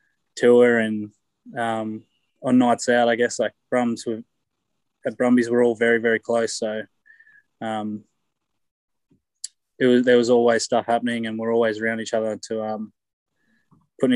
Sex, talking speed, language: male, 155 wpm, English